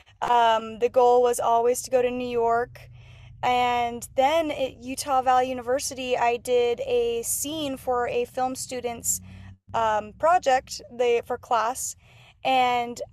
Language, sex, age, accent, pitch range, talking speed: English, female, 20-39, American, 230-270 Hz, 135 wpm